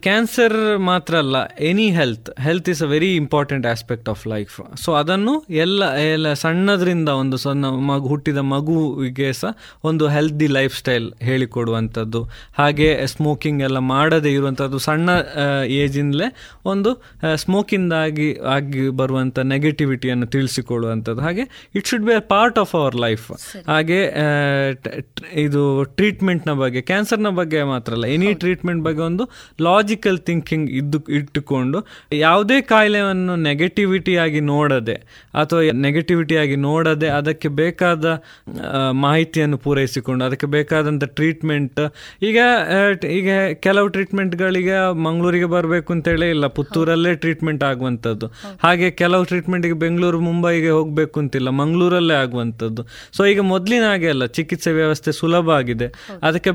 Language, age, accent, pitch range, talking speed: Kannada, 20-39, native, 140-180 Hz, 115 wpm